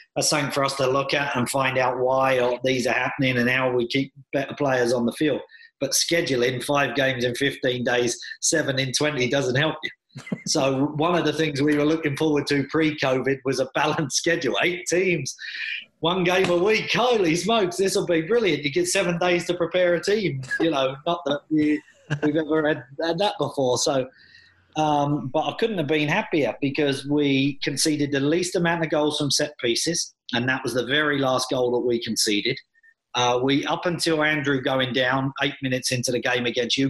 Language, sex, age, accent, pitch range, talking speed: English, male, 30-49, British, 135-160 Hz, 200 wpm